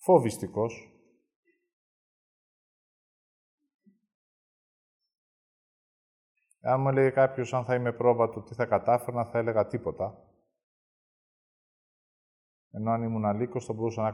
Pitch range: 110-140 Hz